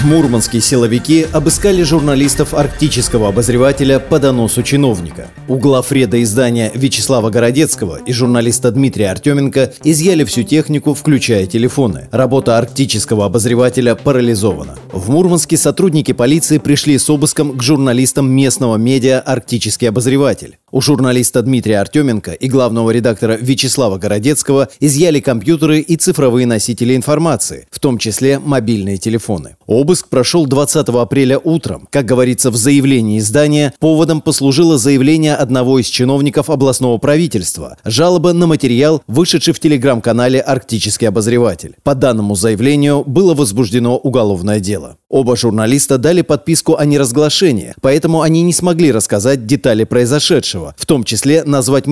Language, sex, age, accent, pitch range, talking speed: Russian, male, 30-49, native, 120-145 Hz, 125 wpm